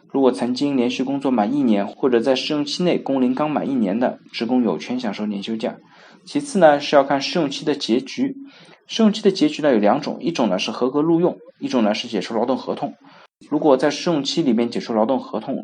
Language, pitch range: Chinese, 115-150 Hz